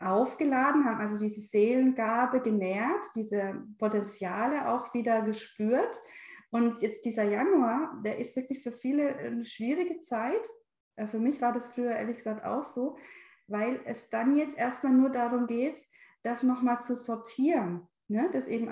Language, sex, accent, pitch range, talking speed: German, female, German, 210-270 Hz, 150 wpm